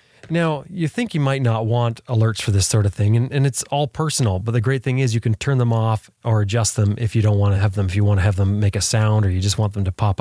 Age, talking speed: 30-49, 320 wpm